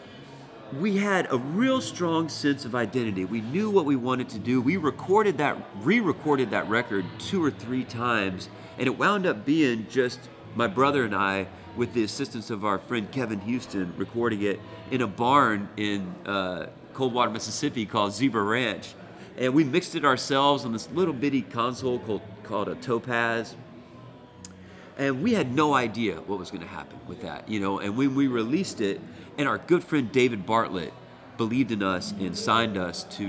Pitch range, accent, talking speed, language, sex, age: 100-130 Hz, American, 180 wpm, English, male, 40-59